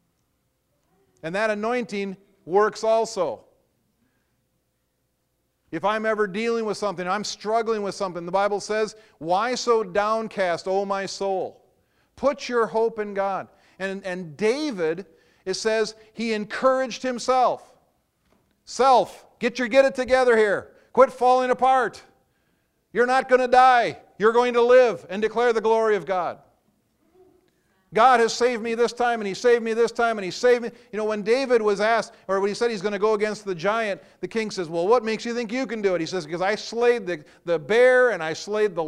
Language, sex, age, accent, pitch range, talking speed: English, male, 50-69, American, 185-235 Hz, 185 wpm